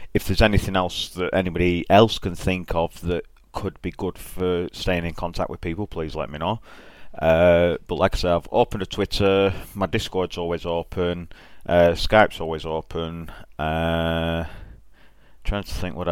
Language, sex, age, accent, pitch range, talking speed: English, male, 30-49, British, 85-95 Hz, 170 wpm